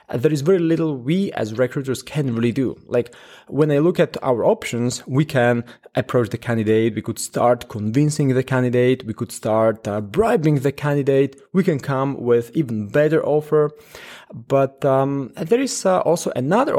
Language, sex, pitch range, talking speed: English, male, 120-165 Hz, 175 wpm